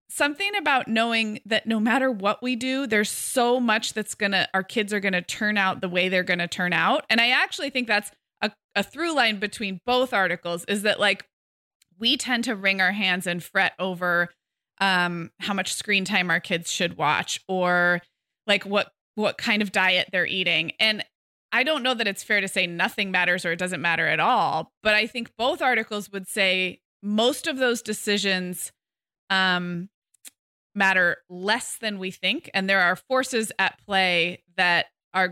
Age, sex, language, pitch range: 20-39, female, English, 180-225 Hz